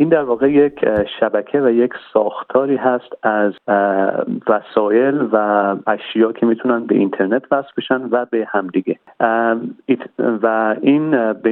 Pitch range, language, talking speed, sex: 105-125 Hz, Persian, 130 wpm, male